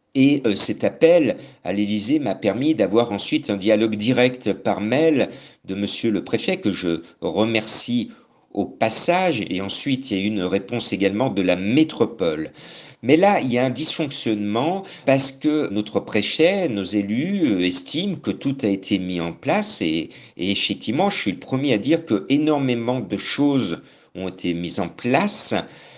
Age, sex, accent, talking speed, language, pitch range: 50-69, male, French, 170 wpm, French, 100-135 Hz